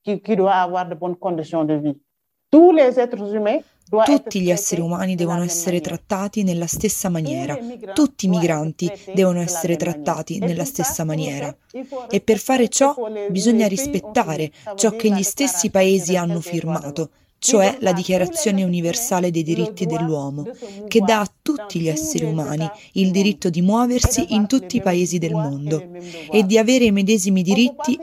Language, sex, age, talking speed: Italian, female, 30-49, 135 wpm